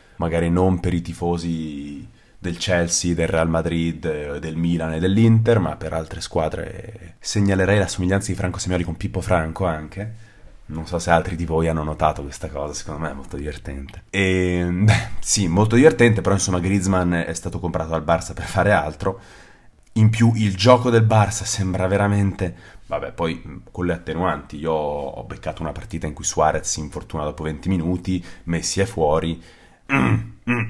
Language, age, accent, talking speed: Italian, 30-49, native, 170 wpm